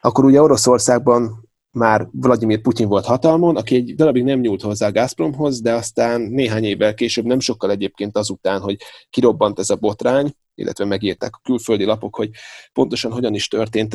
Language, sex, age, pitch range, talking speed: Hungarian, male, 30-49, 105-130 Hz, 170 wpm